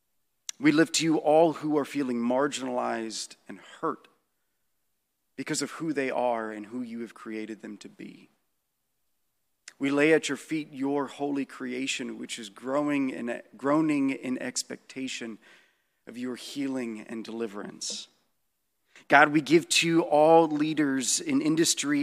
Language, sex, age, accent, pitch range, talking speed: English, male, 40-59, American, 125-160 Hz, 145 wpm